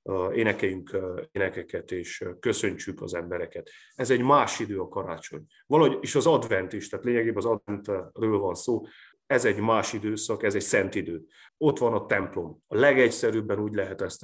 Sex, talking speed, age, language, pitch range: male, 175 wpm, 30-49, Hungarian, 100-125 Hz